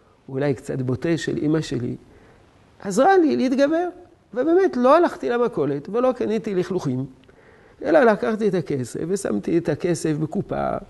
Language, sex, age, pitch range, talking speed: Hebrew, male, 50-69, 130-185 Hz, 130 wpm